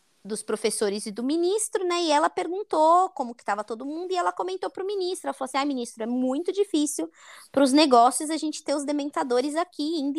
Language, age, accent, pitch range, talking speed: Portuguese, 20-39, Brazilian, 245-330 Hz, 225 wpm